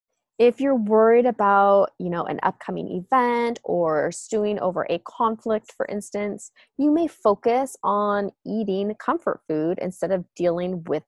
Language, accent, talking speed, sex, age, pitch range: English, American, 145 wpm, female, 20-39, 180-240 Hz